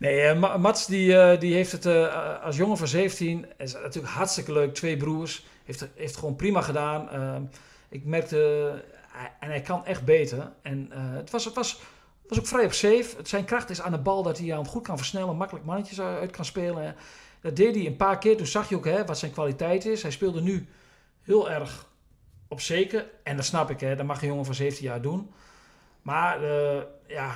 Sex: male